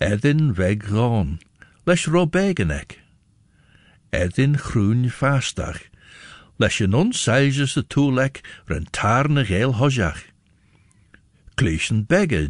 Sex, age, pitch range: male, 60-79, 95-145 Hz